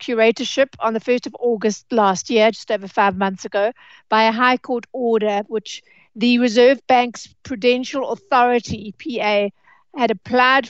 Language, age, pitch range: English, 60-79, 215-245 Hz